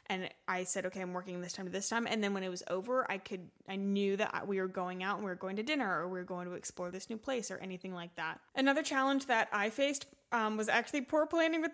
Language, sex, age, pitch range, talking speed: English, female, 20-39, 185-230 Hz, 285 wpm